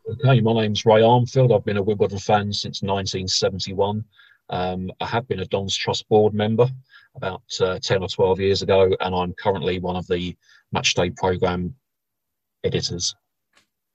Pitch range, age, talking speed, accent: 95-115 Hz, 40-59, 170 wpm, British